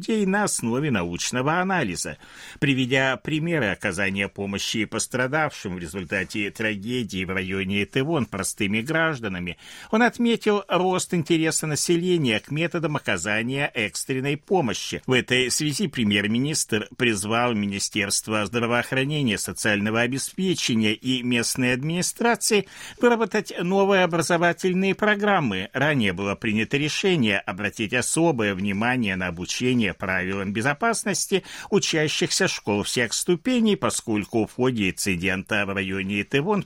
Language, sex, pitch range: Russian, male, 100-170 Hz